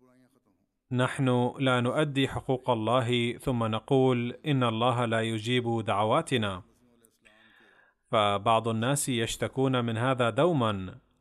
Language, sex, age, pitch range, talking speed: Arabic, male, 30-49, 115-130 Hz, 95 wpm